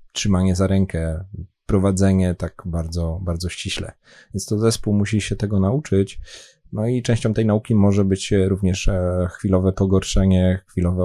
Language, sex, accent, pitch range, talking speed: Polish, male, native, 90-100 Hz, 145 wpm